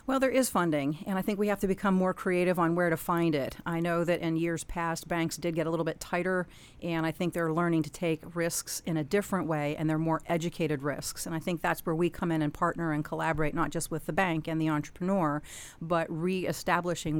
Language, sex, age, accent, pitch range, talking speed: English, female, 40-59, American, 155-185 Hz, 245 wpm